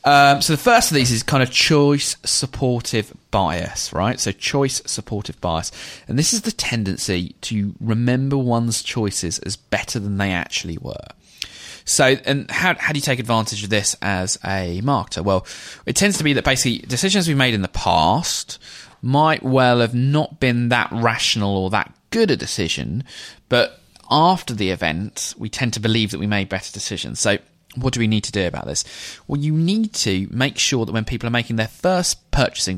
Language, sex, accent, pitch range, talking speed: English, male, British, 95-125 Hz, 190 wpm